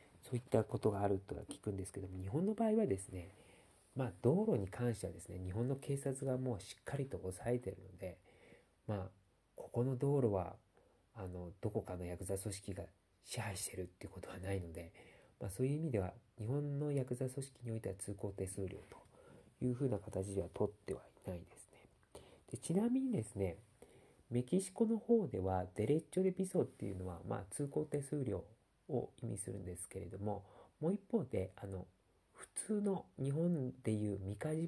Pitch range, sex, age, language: 95-130 Hz, male, 40-59, Japanese